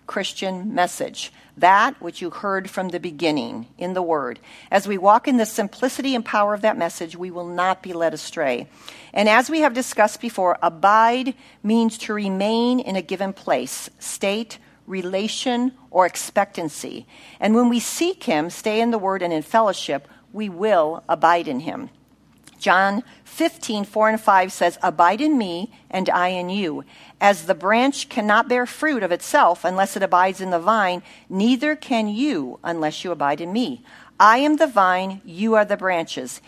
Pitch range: 175-230 Hz